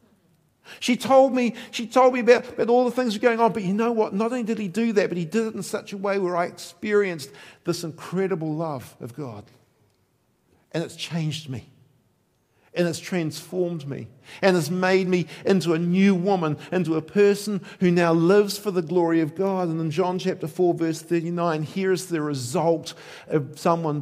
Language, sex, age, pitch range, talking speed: English, male, 50-69, 150-190 Hz, 200 wpm